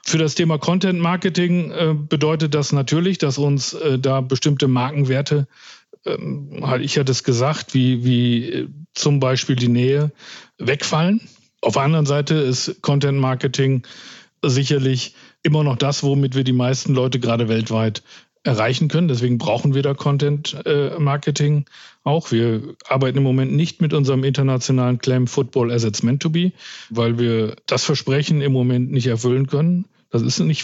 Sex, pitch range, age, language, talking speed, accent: male, 130-155 Hz, 50-69, German, 150 wpm, German